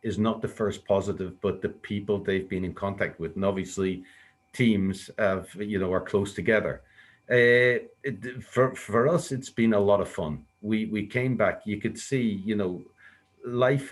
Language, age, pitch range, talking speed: English, 50-69, 95-115 Hz, 180 wpm